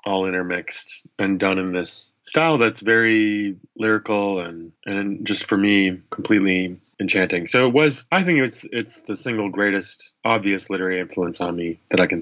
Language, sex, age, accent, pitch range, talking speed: English, male, 20-39, American, 90-105 Hz, 175 wpm